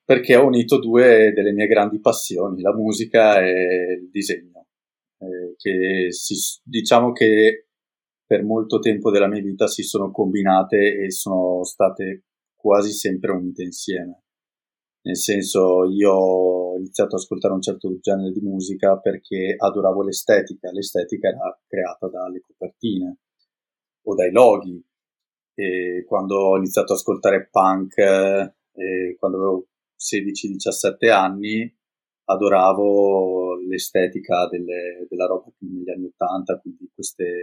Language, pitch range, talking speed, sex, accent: Italian, 95-110 Hz, 125 wpm, male, native